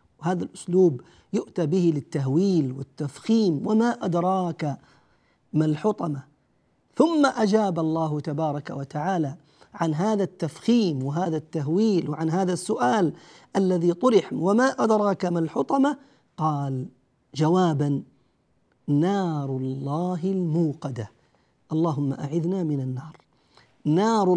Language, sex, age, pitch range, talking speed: Arabic, male, 50-69, 155-215 Hz, 95 wpm